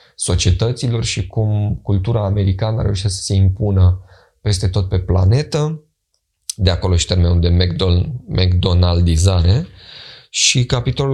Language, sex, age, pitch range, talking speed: Romanian, male, 20-39, 95-125 Hz, 120 wpm